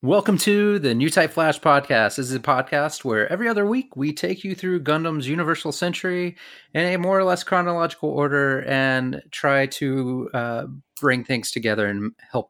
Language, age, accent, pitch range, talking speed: English, 30-49, American, 125-160 Hz, 180 wpm